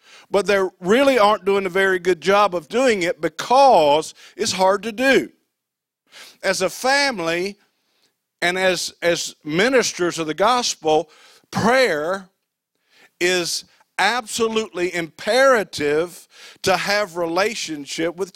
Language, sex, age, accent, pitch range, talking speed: English, male, 50-69, American, 180-235 Hz, 115 wpm